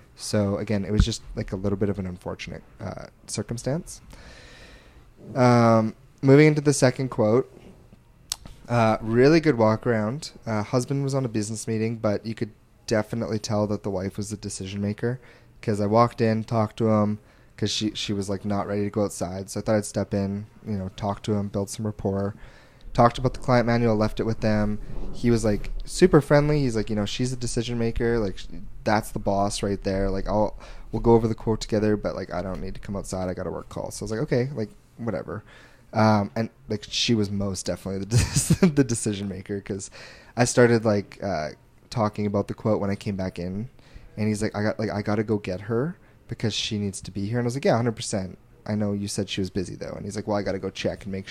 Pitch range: 100-120 Hz